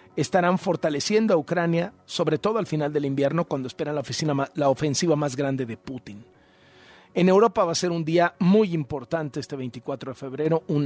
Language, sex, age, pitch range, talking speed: Spanish, male, 40-59, 140-195 Hz, 175 wpm